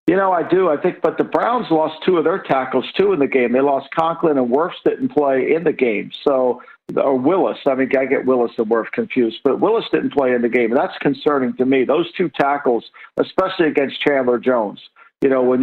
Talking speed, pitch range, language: 235 wpm, 130-165 Hz, English